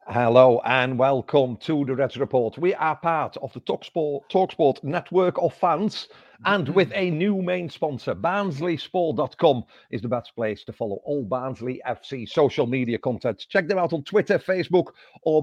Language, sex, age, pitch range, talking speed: English, male, 50-69, 135-185 Hz, 165 wpm